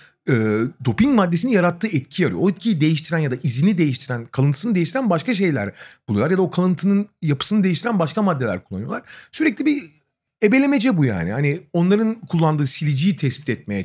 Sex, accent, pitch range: male, native, 135-205 Hz